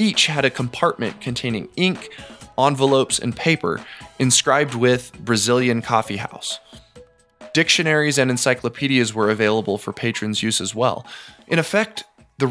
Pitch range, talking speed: 115-160 Hz, 130 wpm